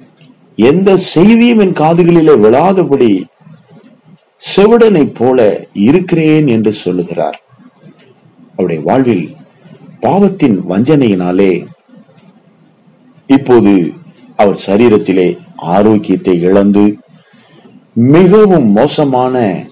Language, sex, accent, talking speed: Tamil, male, native, 60 wpm